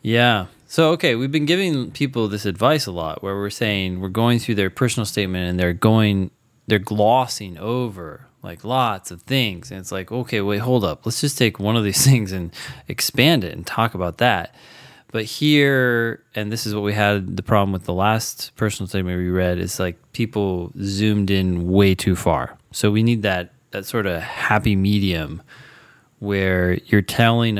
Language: English